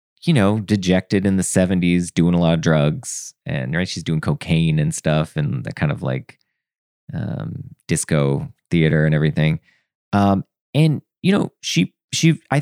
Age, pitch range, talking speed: 20-39, 90-140 Hz, 165 wpm